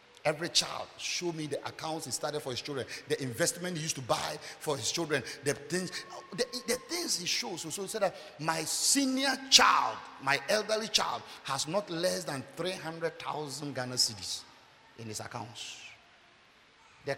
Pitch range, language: 140-210 Hz, English